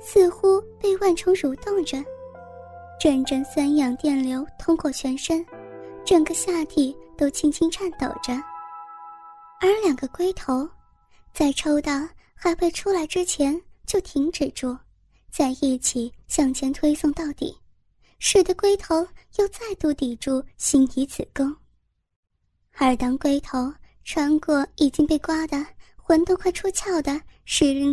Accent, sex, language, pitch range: native, male, Chinese, 270-345 Hz